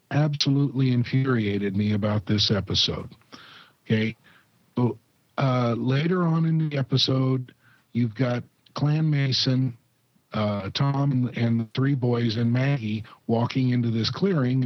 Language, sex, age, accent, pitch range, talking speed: English, male, 50-69, American, 110-140 Hz, 125 wpm